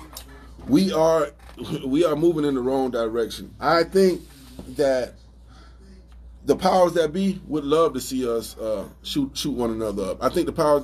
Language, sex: English, male